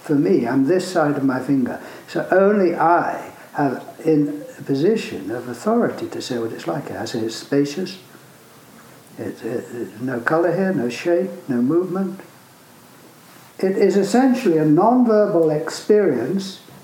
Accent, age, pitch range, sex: British, 60-79, 155-220 Hz, male